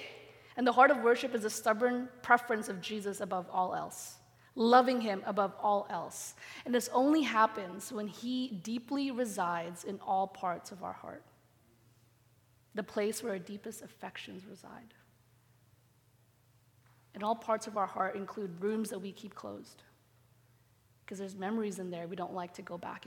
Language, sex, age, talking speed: English, female, 20-39, 165 wpm